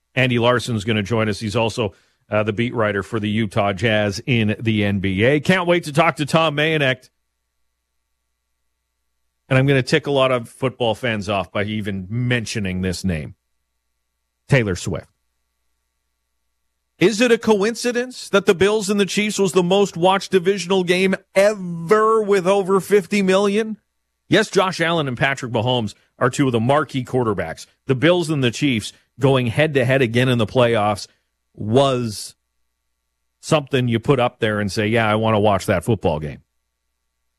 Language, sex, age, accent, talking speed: English, male, 40-59, American, 165 wpm